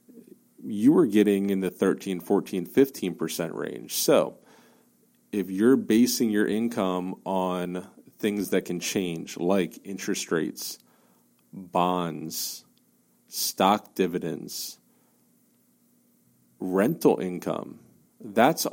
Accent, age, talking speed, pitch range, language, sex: American, 40-59, 95 wpm, 90-110 Hz, English, male